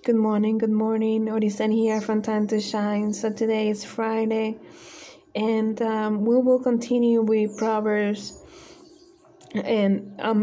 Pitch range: 200-225 Hz